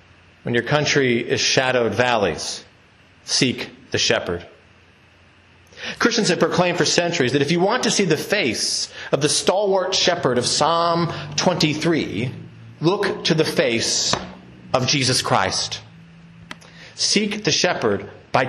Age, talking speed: 40-59, 130 wpm